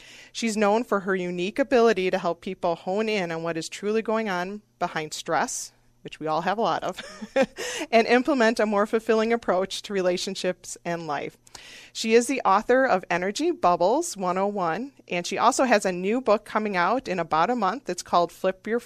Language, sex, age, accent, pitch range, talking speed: English, female, 30-49, American, 170-225 Hz, 195 wpm